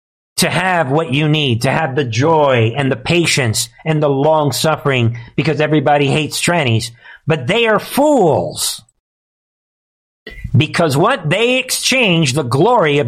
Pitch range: 145-205 Hz